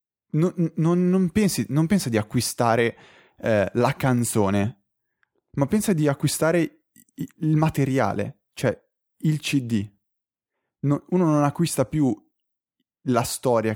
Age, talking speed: 20-39, 120 wpm